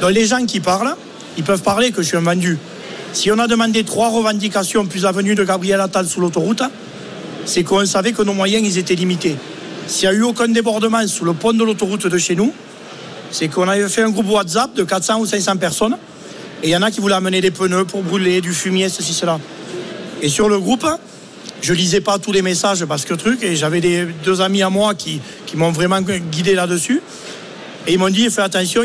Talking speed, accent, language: 230 wpm, French, French